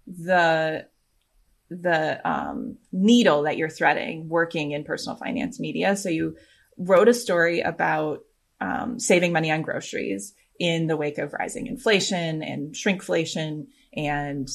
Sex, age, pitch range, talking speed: female, 20-39, 155-205 Hz, 130 wpm